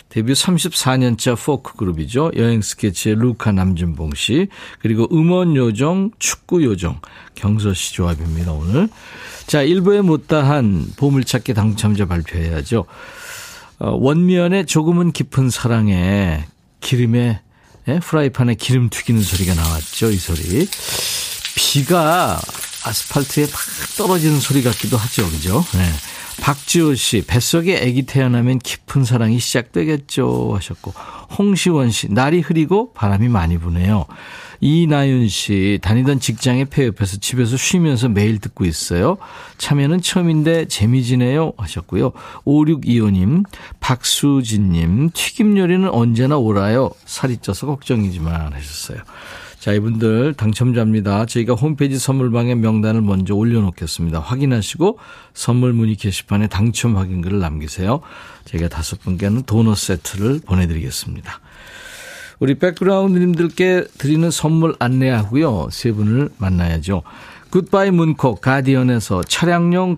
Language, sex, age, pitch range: Korean, male, 50-69, 100-150 Hz